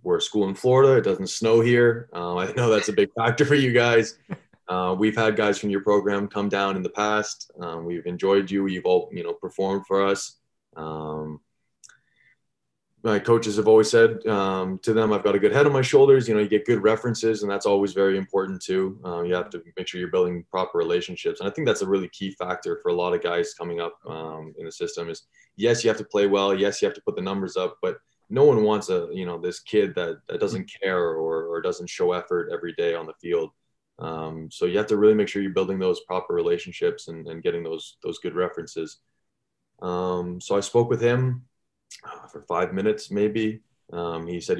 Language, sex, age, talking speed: English, male, 20-39, 230 wpm